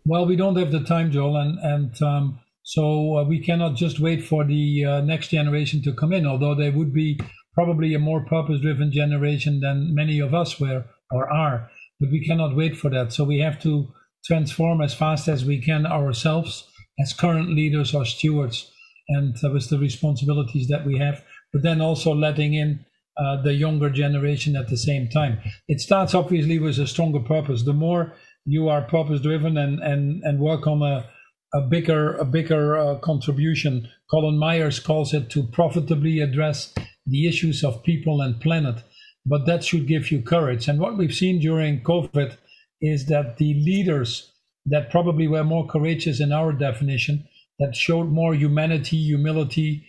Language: English